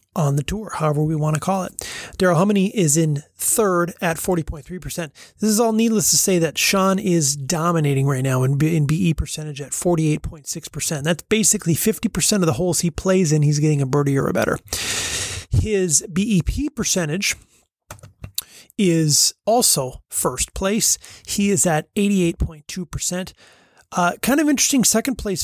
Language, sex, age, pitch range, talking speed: English, male, 30-49, 150-190 Hz, 155 wpm